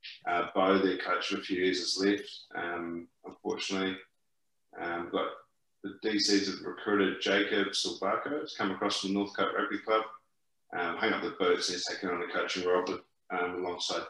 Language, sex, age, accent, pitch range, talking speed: English, male, 30-49, Australian, 90-100 Hz, 185 wpm